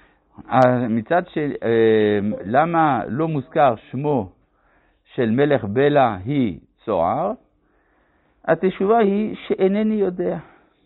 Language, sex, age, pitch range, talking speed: Hebrew, male, 60-79, 105-155 Hz, 85 wpm